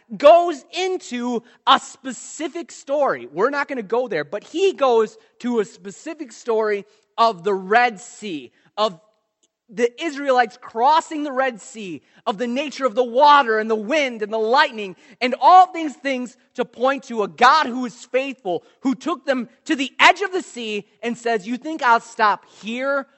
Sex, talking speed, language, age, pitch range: male, 180 wpm, English, 30-49, 175-255 Hz